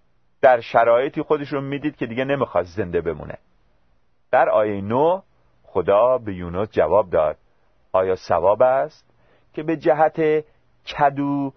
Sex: male